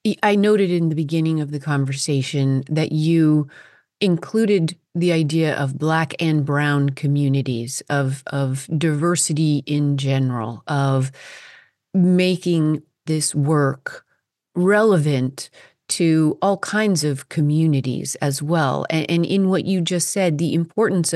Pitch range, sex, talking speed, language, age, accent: 140-170 Hz, female, 125 wpm, English, 30-49, American